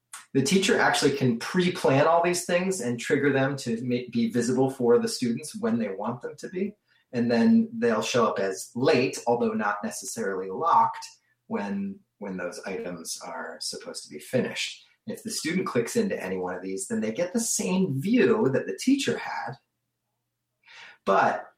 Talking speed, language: 180 wpm, English